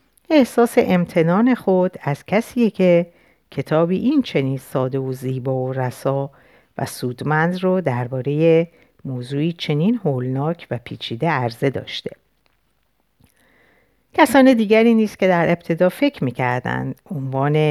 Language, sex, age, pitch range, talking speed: Persian, female, 50-69, 130-185 Hz, 115 wpm